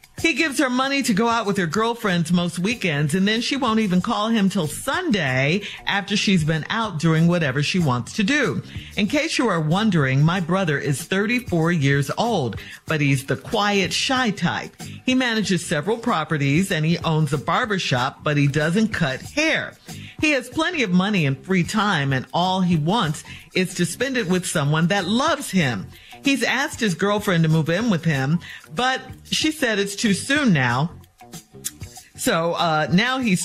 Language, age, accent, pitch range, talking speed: English, 50-69, American, 155-220 Hz, 185 wpm